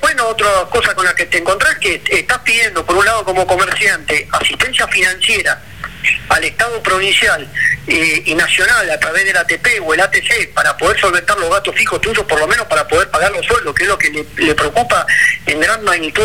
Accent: Argentinian